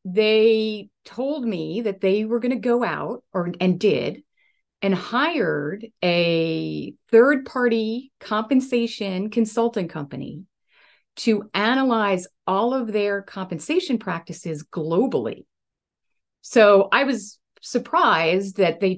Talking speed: 110 wpm